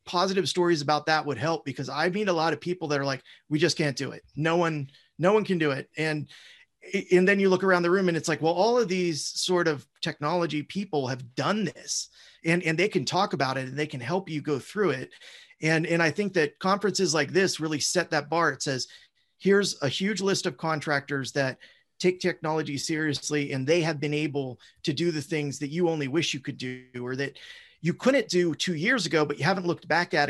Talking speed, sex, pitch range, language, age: 235 wpm, male, 135-170 Hz, English, 30-49